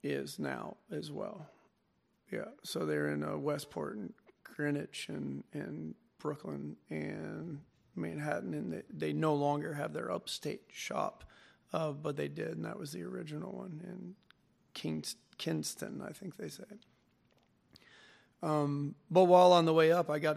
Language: English